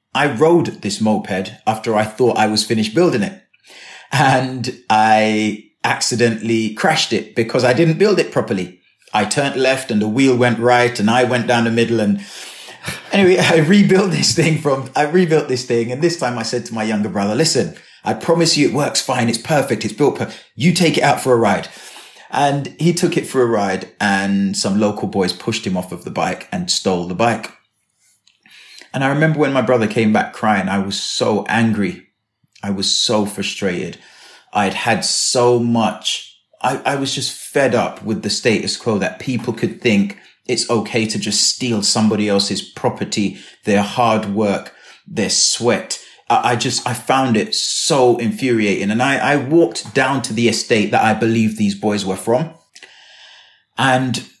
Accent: British